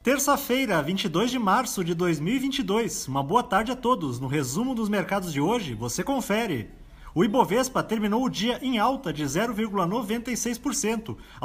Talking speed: 145 wpm